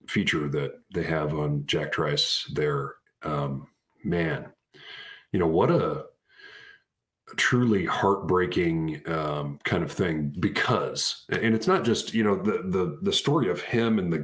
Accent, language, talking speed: American, English, 150 wpm